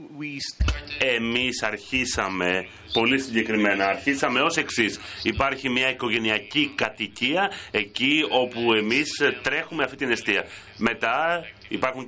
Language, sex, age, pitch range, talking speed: French, male, 30-49, 105-145 Hz, 100 wpm